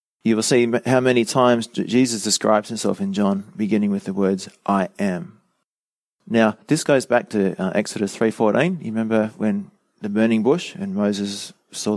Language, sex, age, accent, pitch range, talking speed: English, male, 30-49, Australian, 105-135 Hz, 170 wpm